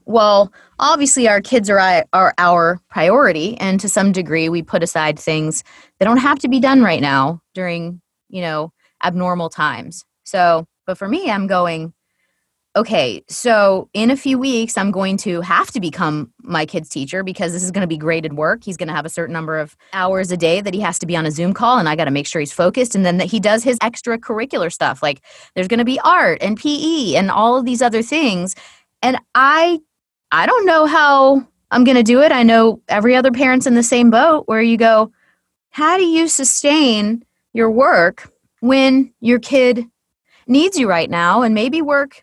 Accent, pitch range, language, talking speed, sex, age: American, 180-265 Hz, English, 205 wpm, female, 20-39